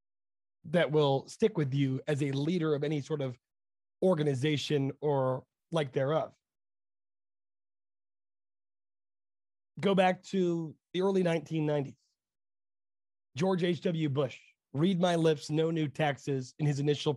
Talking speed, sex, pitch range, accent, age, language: 120 wpm, male, 130-170 Hz, American, 30-49, English